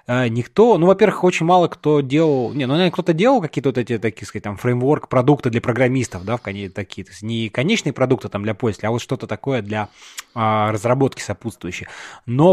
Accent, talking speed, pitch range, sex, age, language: native, 190 wpm, 115-155 Hz, male, 20-39, Russian